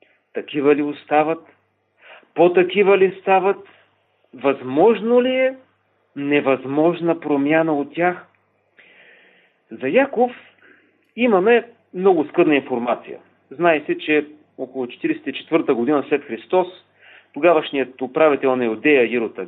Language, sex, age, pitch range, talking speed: Bulgarian, male, 40-59, 135-175 Hz, 100 wpm